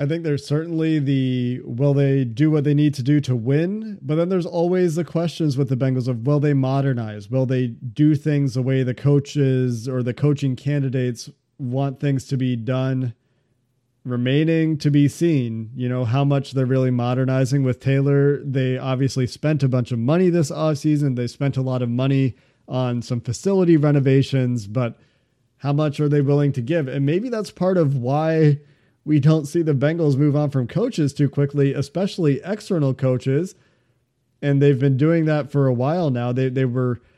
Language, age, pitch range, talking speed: English, 40-59, 125-150 Hz, 190 wpm